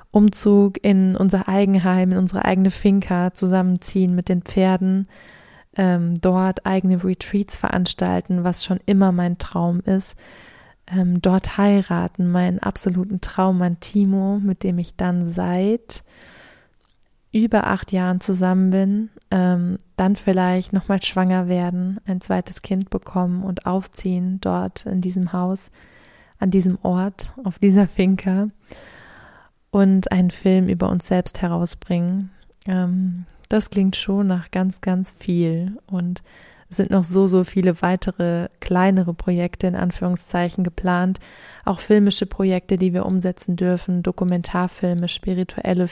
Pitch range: 180-195 Hz